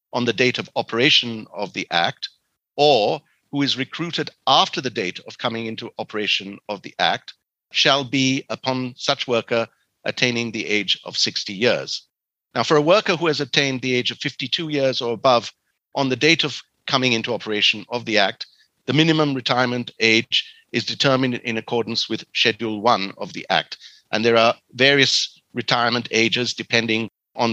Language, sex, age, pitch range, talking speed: English, male, 50-69, 110-135 Hz, 170 wpm